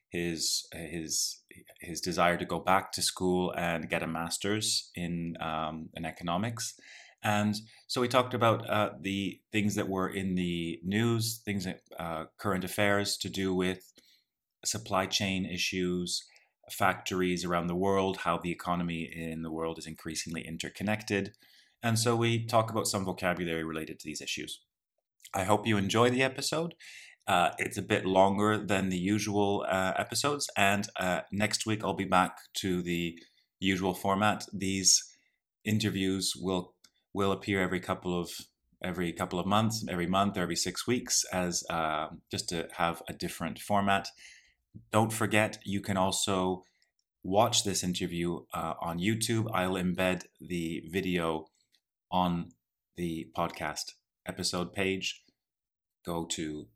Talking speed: 145 wpm